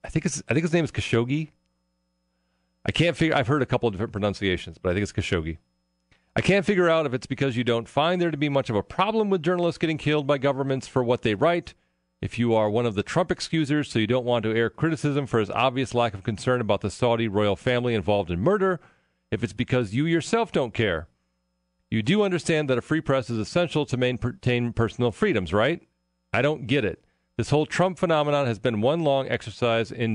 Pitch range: 100-145 Hz